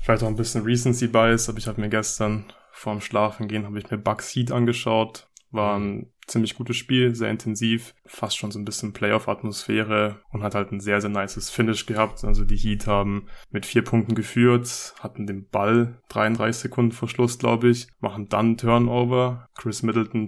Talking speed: 190 wpm